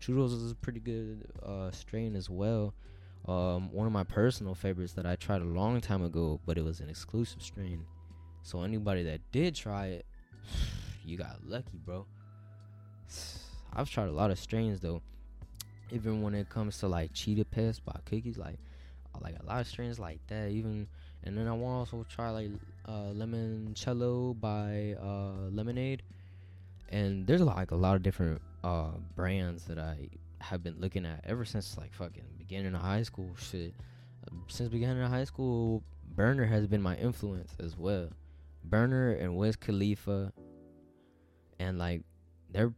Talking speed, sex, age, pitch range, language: 170 wpm, male, 10-29, 90-110 Hz, English